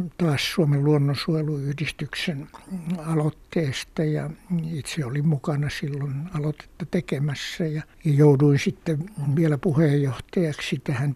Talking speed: 90 wpm